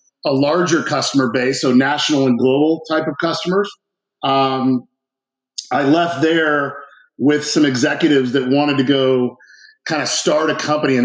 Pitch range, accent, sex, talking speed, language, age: 130-150 Hz, American, male, 150 wpm, English, 40-59